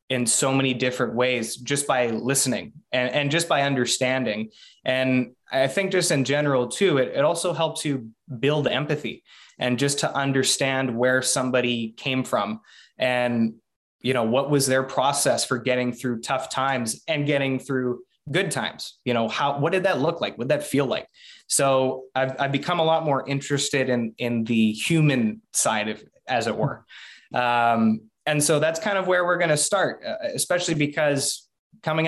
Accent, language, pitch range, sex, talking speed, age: American, English, 125-145 Hz, male, 180 wpm, 20-39